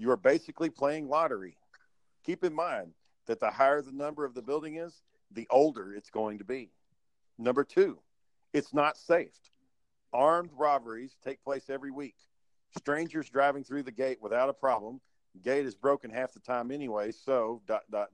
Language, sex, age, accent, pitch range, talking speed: English, male, 50-69, American, 125-150 Hz, 170 wpm